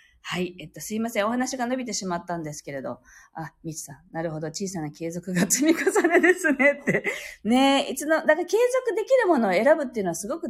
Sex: female